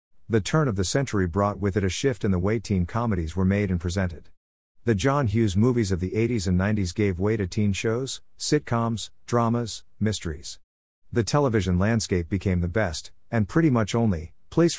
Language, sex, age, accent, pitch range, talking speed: English, male, 50-69, American, 90-115 Hz, 190 wpm